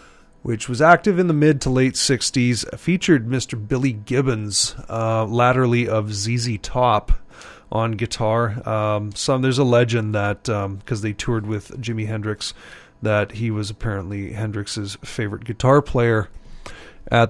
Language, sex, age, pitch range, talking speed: English, male, 30-49, 110-130 Hz, 145 wpm